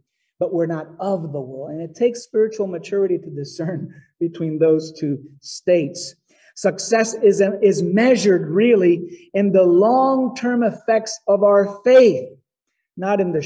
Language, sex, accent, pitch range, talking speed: English, male, American, 155-200 Hz, 145 wpm